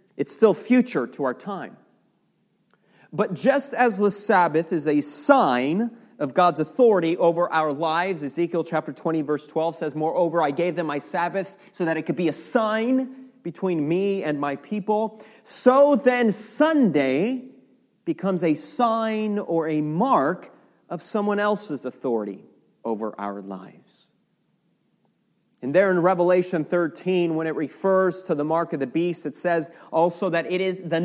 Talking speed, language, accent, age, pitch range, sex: 155 wpm, English, American, 30-49, 165-225 Hz, male